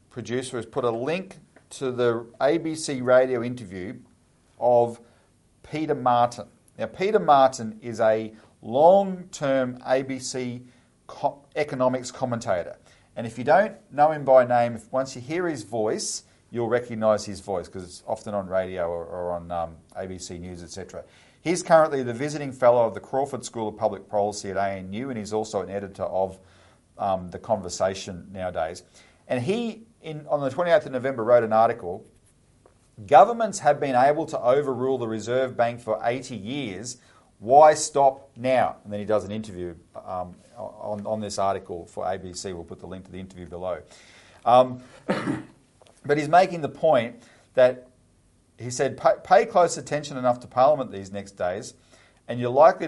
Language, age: English, 40-59